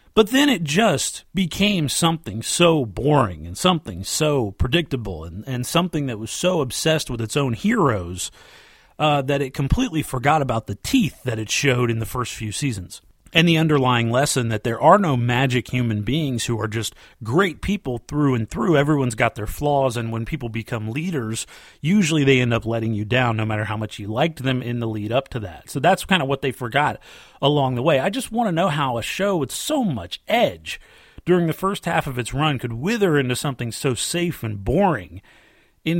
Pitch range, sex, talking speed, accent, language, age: 120-165 Hz, male, 210 wpm, American, English, 30-49